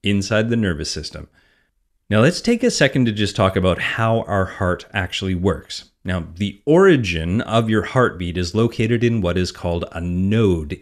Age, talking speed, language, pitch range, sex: 30-49, 175 wpm, English, 90-120 Hz, male